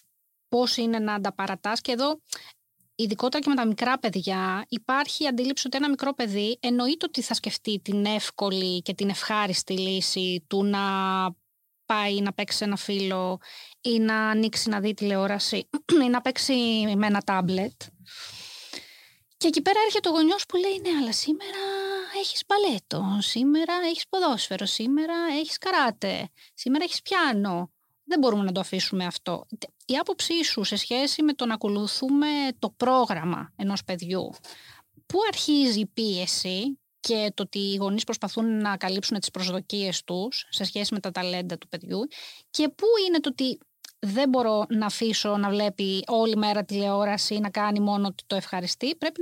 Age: 20-39